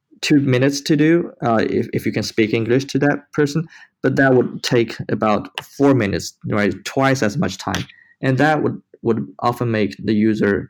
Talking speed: 190 wpm